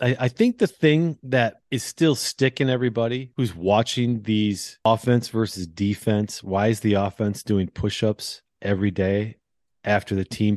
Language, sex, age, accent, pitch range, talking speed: English, male, 30-49, American, 105-135 Hz, 150 wpm